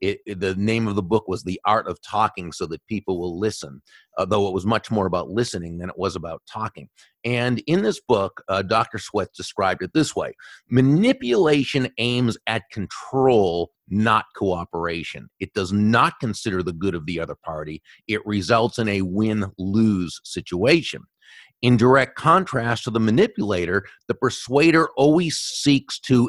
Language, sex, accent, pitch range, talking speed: English, male, American, 100-125 Hz, 160 wpm